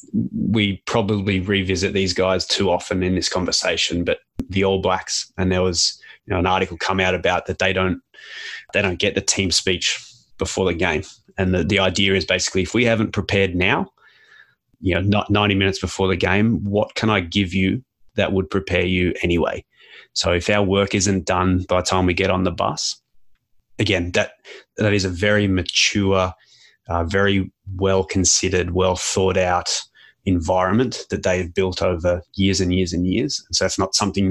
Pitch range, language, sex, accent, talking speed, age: 90-100 Hz, English, male, Australian, 190 wpm, 20-39